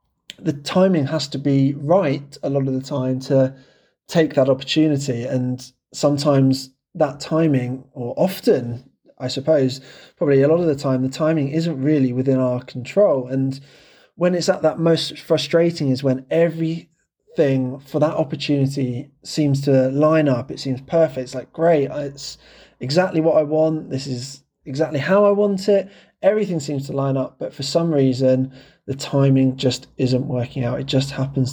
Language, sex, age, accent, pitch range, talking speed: English, male, 20-39, British, 130-155 Hz, 170 wpm